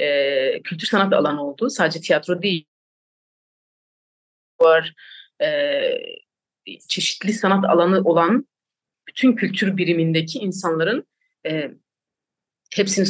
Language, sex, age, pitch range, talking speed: Turkish, female, 30-49, 160-225 Hz, 90 wpm